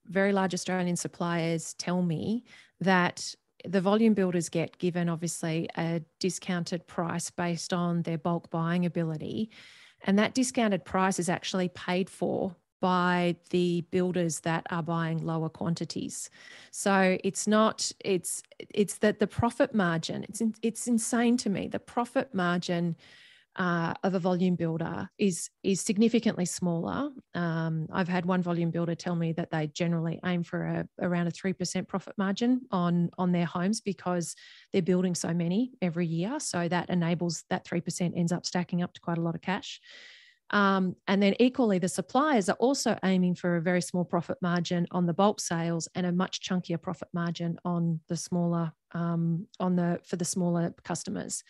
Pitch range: 170-195 Hz